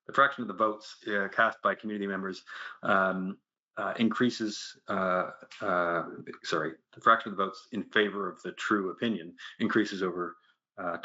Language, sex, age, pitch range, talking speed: English, male, 30-49, 90-115 Hz, 165 wpm